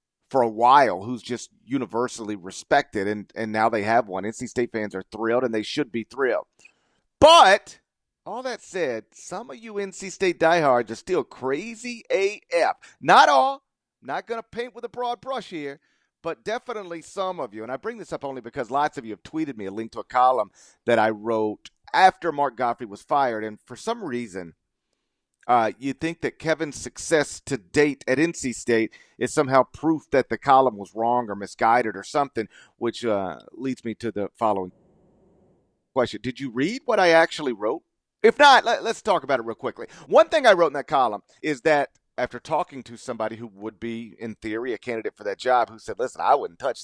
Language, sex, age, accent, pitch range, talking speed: English, male, 40-59, American, 115-170 Hz, 200 wpm